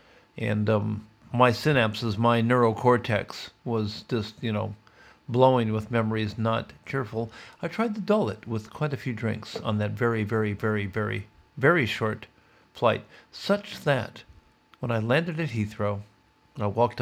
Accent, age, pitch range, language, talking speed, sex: American, 50-69, 100-125 Hz, English, 150 wpm, male